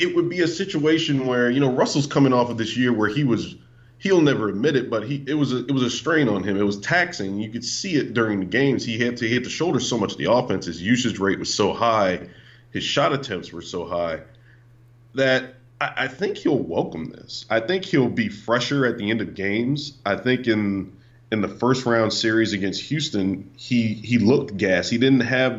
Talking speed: 230 wpm